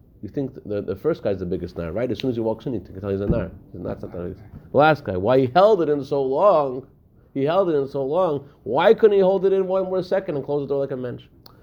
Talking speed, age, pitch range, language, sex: 285 wpm, 30-49, 100-135 Hz, English, male